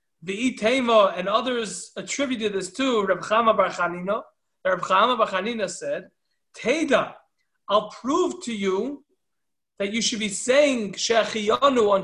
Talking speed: 110 wpm